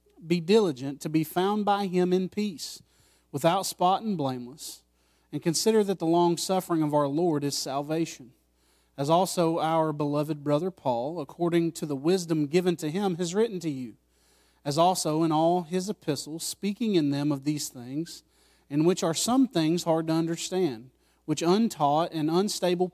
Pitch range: 145-180 Hz